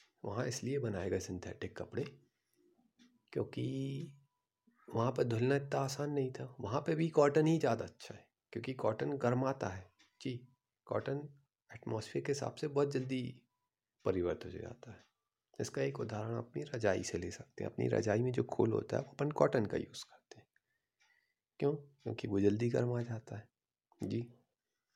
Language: Hindi